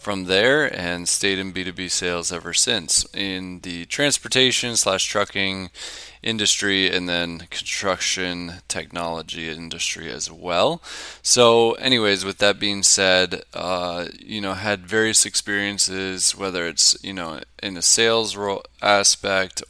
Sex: male